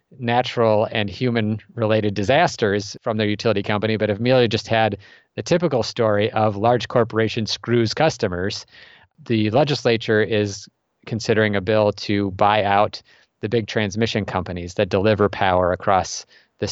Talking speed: 140 wpm